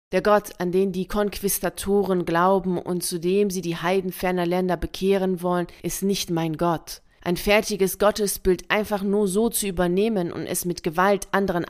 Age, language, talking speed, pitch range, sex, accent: 30-49, German, 175 wpm, 175-205 Hz, female, German